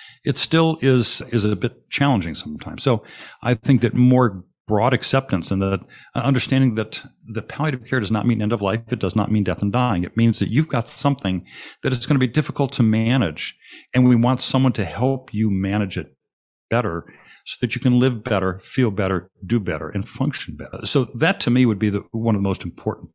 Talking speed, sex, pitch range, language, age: 220 wpm, male, 100-125 Hz, English, 50-69